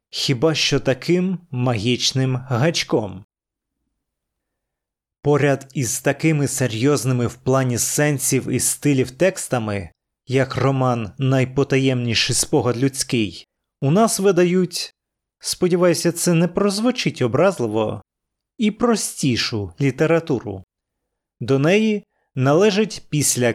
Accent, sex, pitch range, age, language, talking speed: native, male, 120-170 Hz, 30-49, Ukrainian, 90 wpm